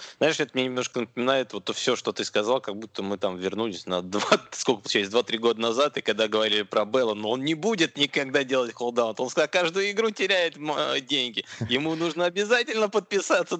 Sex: male